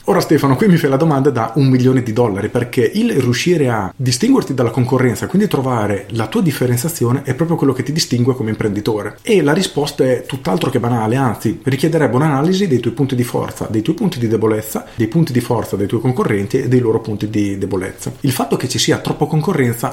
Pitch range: 115-145 Hz